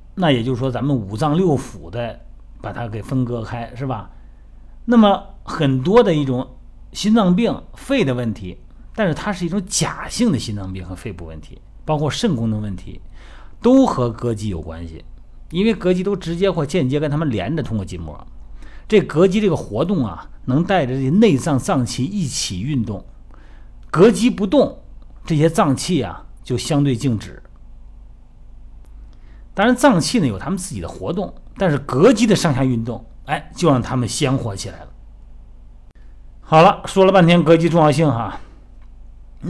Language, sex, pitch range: Chinese, male, 110-165 Hz